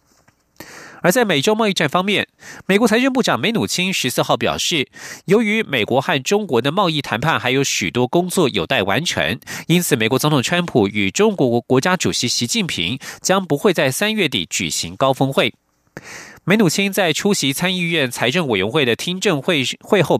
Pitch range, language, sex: 125-185 Hz, Chinese, male